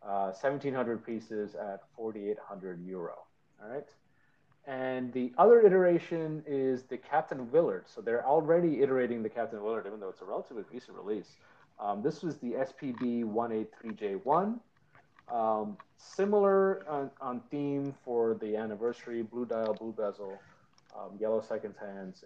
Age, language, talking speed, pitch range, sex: 30-49, English, 140 wpm, 115-160 Hz, male